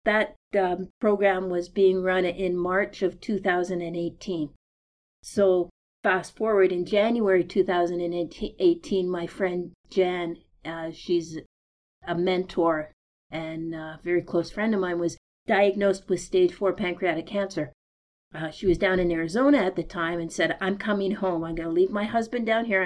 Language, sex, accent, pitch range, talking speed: English, female, American, 170-195 Hz, 155 wpm